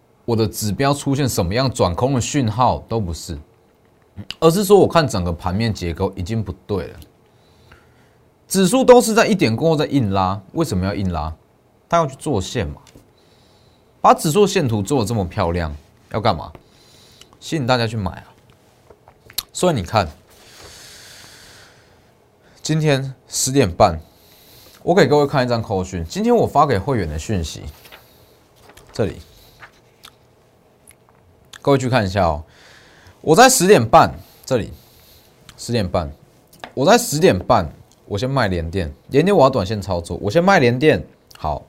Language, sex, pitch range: Chinese, male, 90-130 Hz